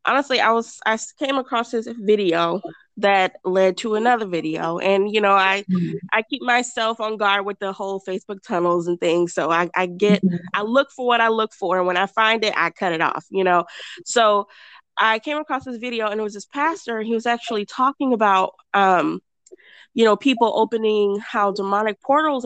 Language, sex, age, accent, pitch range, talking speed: English, female, 20-39, American, 200-250 Hz, 205 wpm